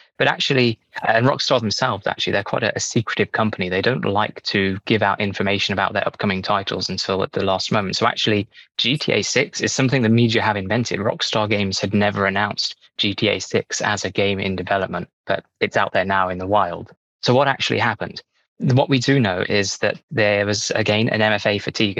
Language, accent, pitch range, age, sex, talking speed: English, British, 100-115 Hz, 20-39, male, 200 wpm